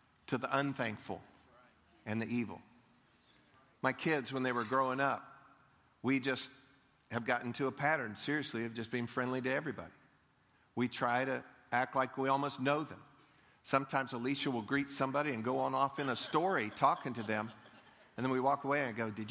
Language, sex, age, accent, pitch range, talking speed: English, male, 50-69, American, 115-140 Hz, 185 wpm